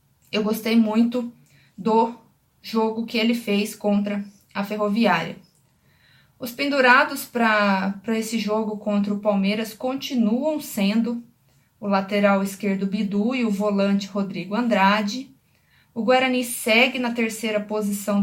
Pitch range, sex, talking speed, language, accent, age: 205-235 Hz, female, 120 wpm, Portuguese, Brazilian, 20-39